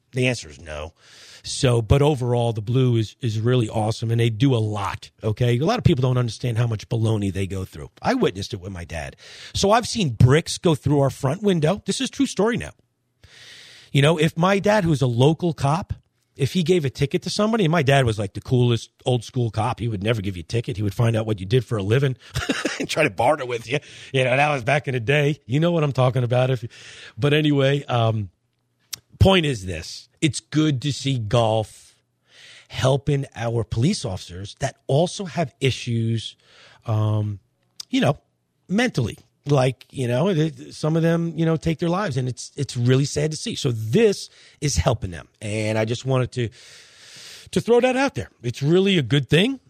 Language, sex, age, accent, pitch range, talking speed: English, male, 40-59, American, 110-150 Hz, 215 wpm